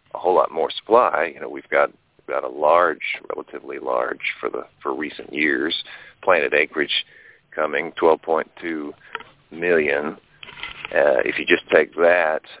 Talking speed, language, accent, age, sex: 145 wpm, English, American, 40-59, male